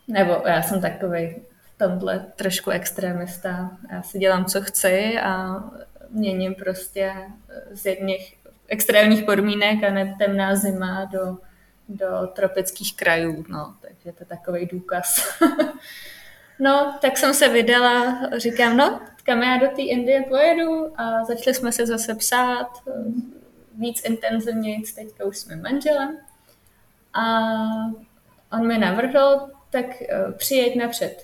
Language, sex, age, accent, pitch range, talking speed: Czech, female, 20-39, native, 190-245 Hz, 125 wpm